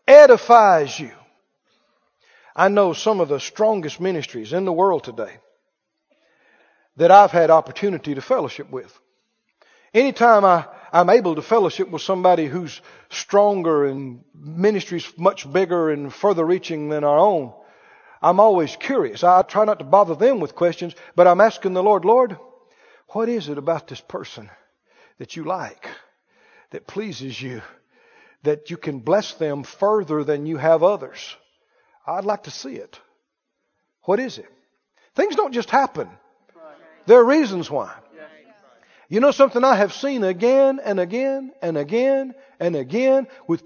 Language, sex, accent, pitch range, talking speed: English, male, American, 165-270 Hz, 150 wpm